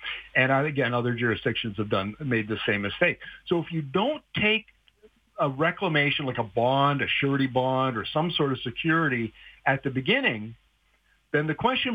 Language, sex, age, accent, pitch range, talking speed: English, male, 50-69, American, 120-165 Hz, 170 wpm